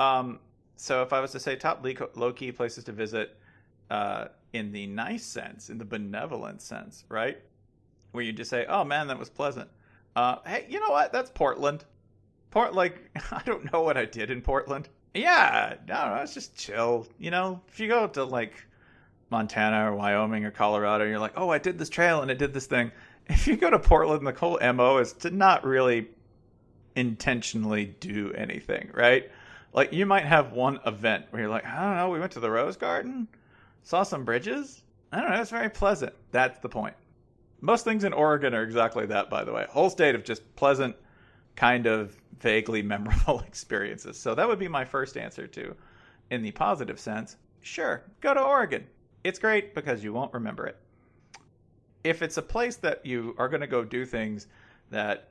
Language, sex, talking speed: English, male, 195 wpm